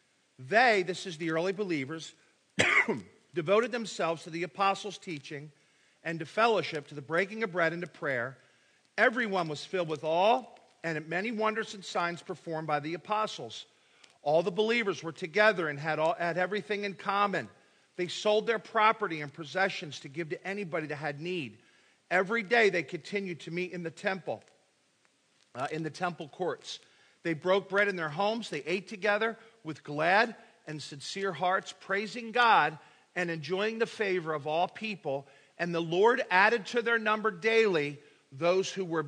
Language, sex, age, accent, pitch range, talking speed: English, male, 50-69, American, 165-215 Hz, 165 wpm